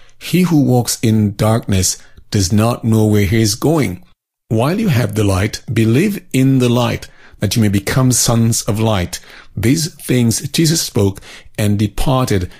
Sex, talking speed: male, 160 wpm